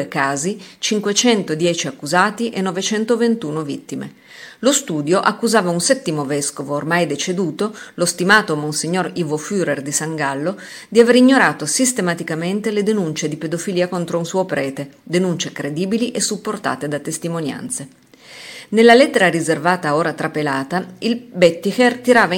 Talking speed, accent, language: 125 wpm, native, Italian